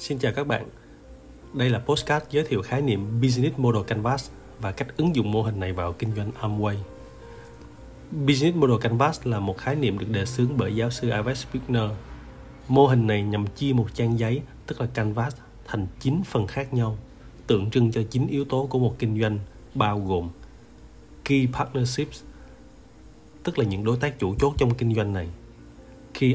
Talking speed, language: 185 wpm, Vietnamese